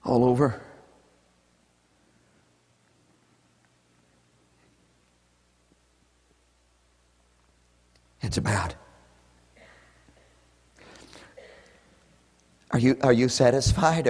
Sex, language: male, English